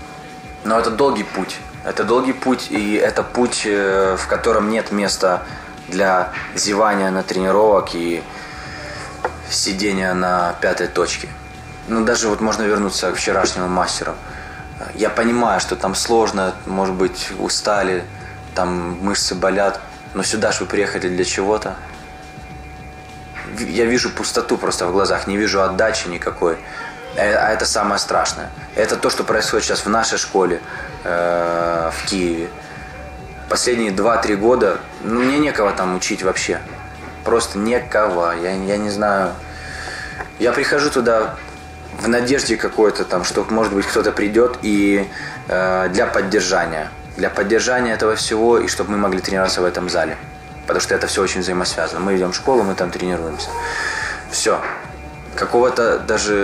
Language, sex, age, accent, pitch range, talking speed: Russian, male, 20-39, native, 90-105 Hz, 140 wpm